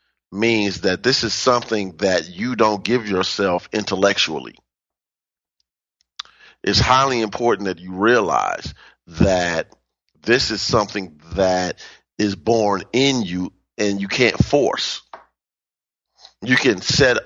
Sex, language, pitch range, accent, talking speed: male, English, 90-110 Hz, American, 115 wpm